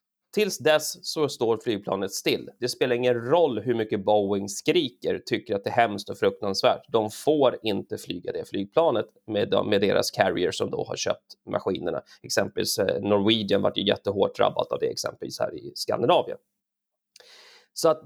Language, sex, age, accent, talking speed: Swedish, male, 30-49, native, 165 wpm